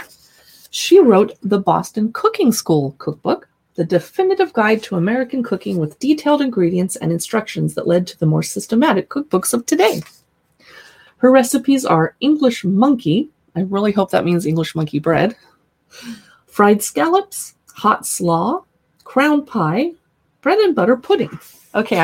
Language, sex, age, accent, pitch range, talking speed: English, female, 30-49, American, 180-295 Hz, 140 wpm